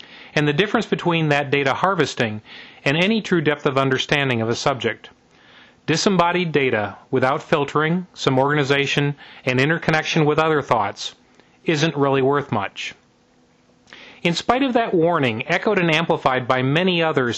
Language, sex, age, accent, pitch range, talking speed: English, male, 40-59, American, 135-175 Hz, 145 wpm